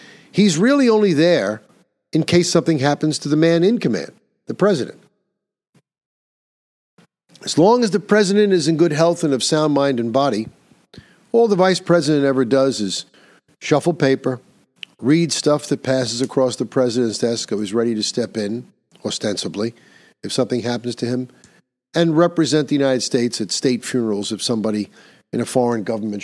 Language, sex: English, male